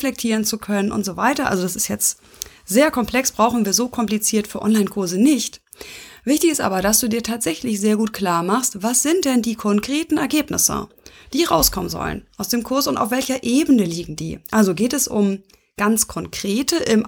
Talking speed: 190 wpm